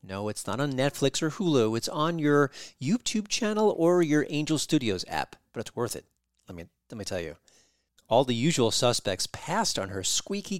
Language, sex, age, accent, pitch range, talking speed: English, male, 40-59, American, 105-160 Hz, 200 wpm